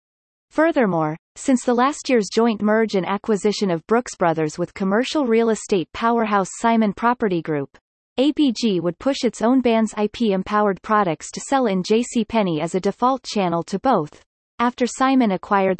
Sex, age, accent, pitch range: female, 30-49, American, 185-245 Hz